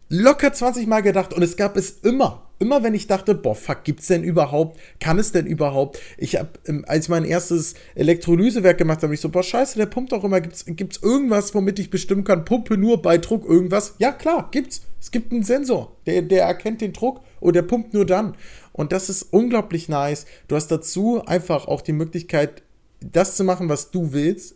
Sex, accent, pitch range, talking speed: male, German, 155-205 Hz, 210 wpm